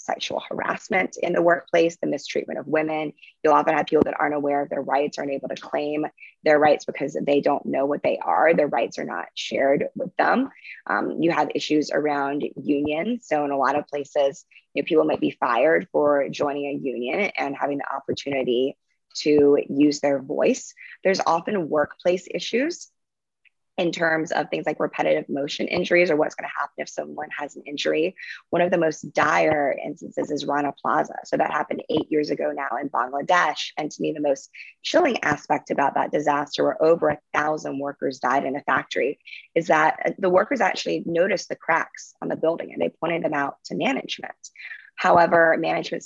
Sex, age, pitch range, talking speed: female, 20-39, 140-165 Hz, 190 wpm